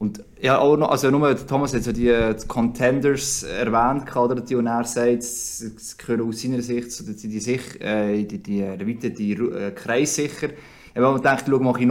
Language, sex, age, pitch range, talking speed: German, male, 20-39, 115-135 Hz, 185 wpm